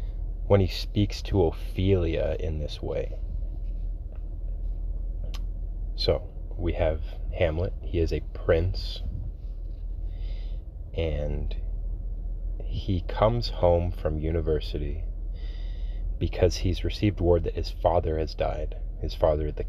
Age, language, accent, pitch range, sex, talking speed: 30-49, English, American, 80-90 Hz, male, 105 wpm